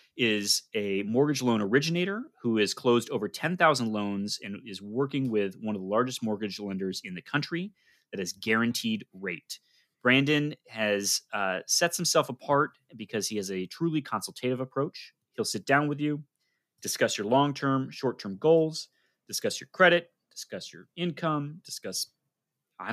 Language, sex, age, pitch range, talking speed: English, male, 30-49, 110-150 Hz, 155 wpm